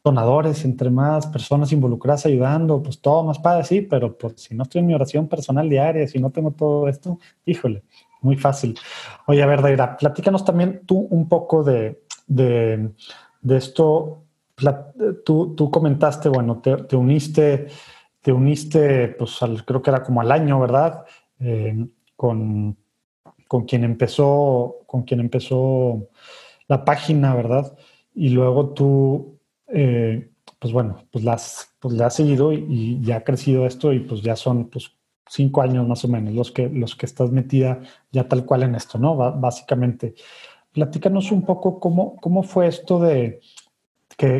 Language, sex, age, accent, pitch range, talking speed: English, male, 30-49, Mexican, 125-155 Hz, 165 wpm